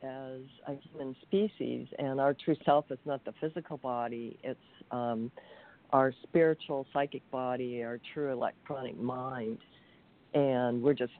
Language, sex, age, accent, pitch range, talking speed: English, female, 50-69, American, 120-145 Hz, 140 wpm